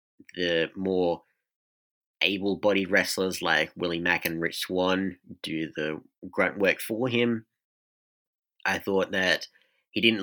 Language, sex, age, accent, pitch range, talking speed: English, male, 30-49, Australian, 90-110 Hz, 125 wpm